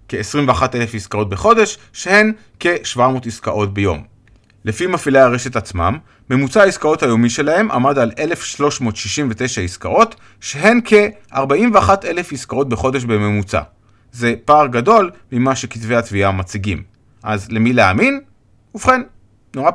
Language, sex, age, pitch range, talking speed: Hebrew, male, 30-49, 110-160 Hz, 110 wpm